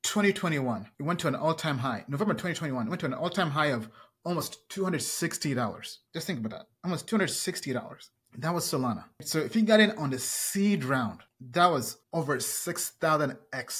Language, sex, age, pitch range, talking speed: English, male, 30-49, 130-185 Hz, 175 wpm